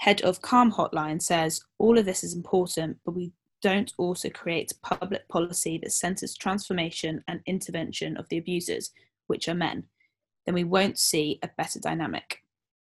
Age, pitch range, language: 10-29, 170-205 Hz, English